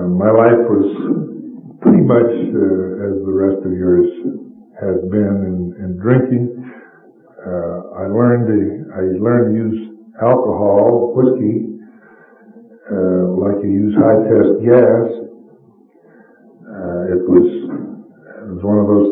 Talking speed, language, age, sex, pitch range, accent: 115 wpm, English, 60-79, male, 95-115 Hz, American